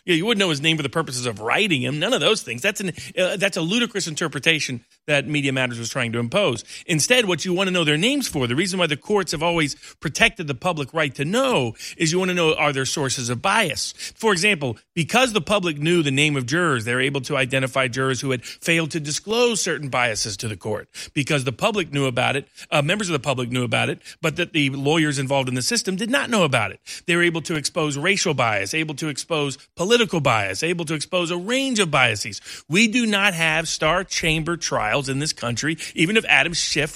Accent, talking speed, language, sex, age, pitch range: American, 245 wpm, English, male, 40-59, 135-180 Hz